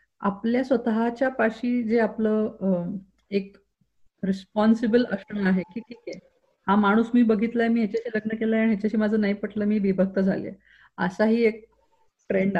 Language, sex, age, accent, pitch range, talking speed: Marathi, female, 30-49, native, 195-240 Hz, 150 wpm